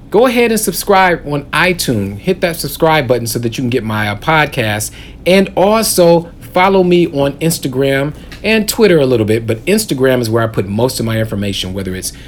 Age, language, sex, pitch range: 40-59, English, male, 110-175 Hz